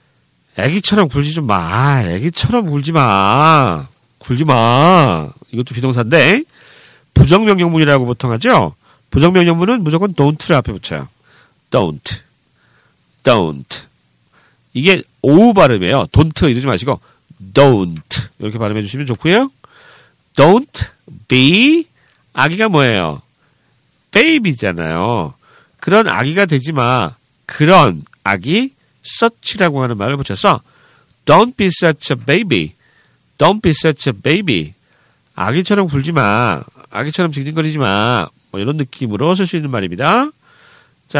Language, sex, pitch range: Korean, male, 120-185 Hz